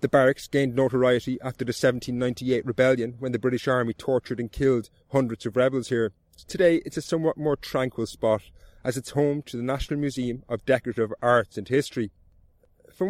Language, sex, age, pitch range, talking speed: English, male, 30-49, 120-140 Hz, 180 wpm